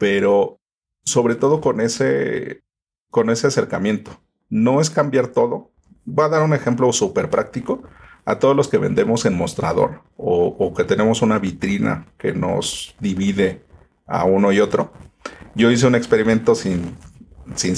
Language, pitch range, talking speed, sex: Spanish, 95-145 Hz, 150 wpm, male